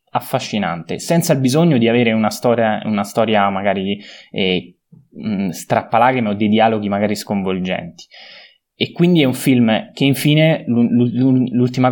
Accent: native